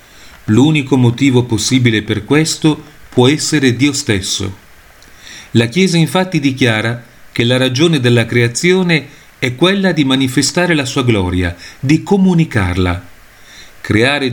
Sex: male